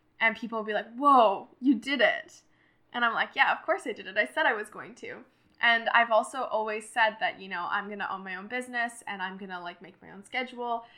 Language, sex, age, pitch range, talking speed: English, female, 10-29, 195-230 Hz, 260 wpm